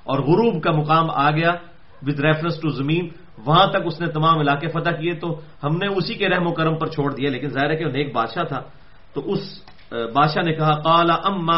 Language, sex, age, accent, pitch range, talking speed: English, male, 40-59, Indian, 150-195 Hz, 230 wpm